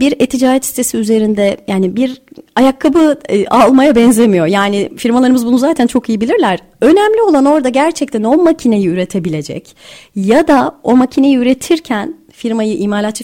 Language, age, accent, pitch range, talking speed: Turkish, 30-49, native, 200-285 Hz, 140 wpm